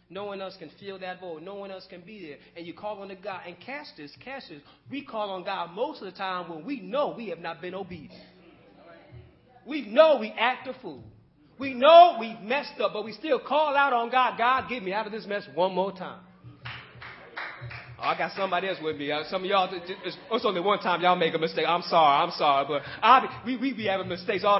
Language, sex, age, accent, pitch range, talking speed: English, male, 30-49, American, 185-255 Hz, 240 wpm